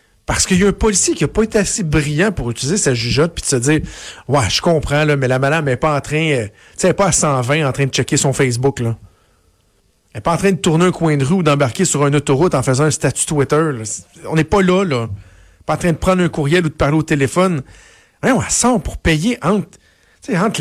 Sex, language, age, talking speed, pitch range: male, French, 50-69, 255 wpm, 125-165 Hz